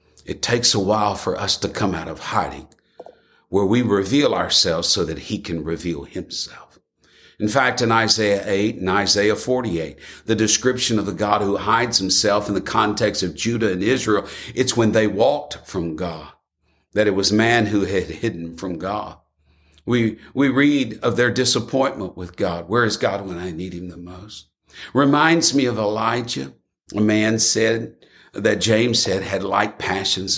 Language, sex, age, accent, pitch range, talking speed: English, male, 60-79, American, 100-120 Hz, 175 wpm